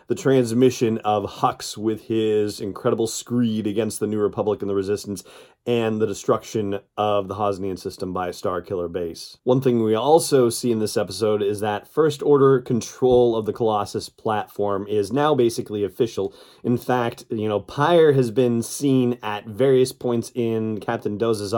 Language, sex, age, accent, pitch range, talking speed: English, male, 30-49, American, 105-125 Hz, 170 wpm